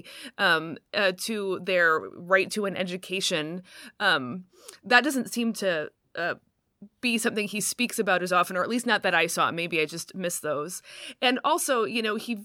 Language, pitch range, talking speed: English, 180-225 Hz, 185 wpm